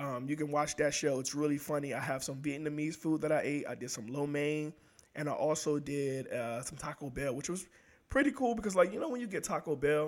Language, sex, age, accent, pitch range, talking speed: English, male, 20-39, American, 140-165 Hz, 255 wpm